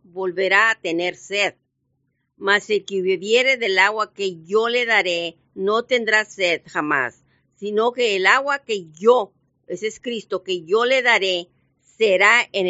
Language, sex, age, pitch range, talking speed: Spanish, female, 50-69, 180-240 Hz, 155 wpm